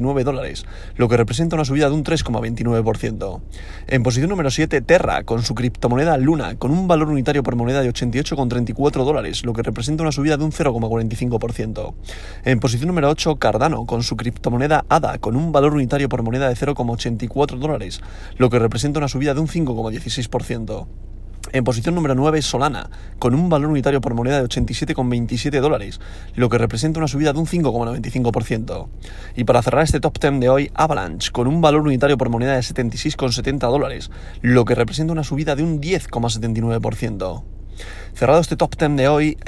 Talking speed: 175 wpm